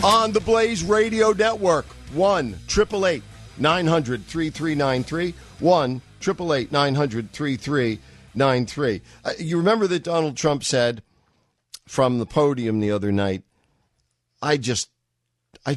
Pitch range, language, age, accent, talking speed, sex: 100-145 Hz, English, 50-69, American, 120 wpm, male